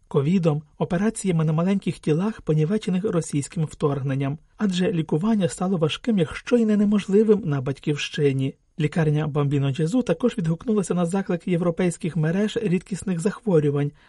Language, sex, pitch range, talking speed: Ukrainian, male, 150-215 Hz, 120 wpm